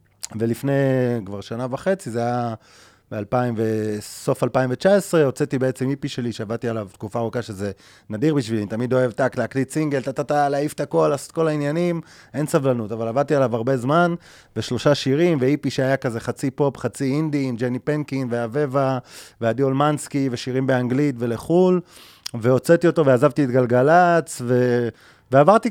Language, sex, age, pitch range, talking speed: Hebrew, male, 30-49, 125-160 Hz, 150 wpm